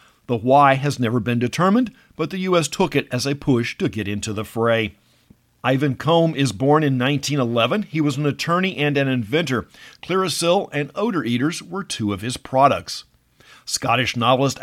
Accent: American